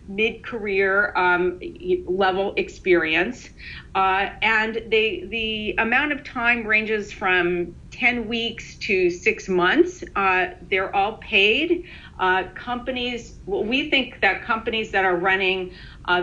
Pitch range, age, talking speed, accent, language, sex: 180-235 Hz, 40-59, 120 wpm, American, English, female